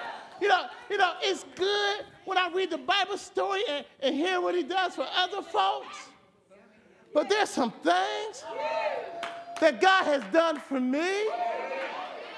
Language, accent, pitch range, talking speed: English, American, 320-420 Hz, 150 wpm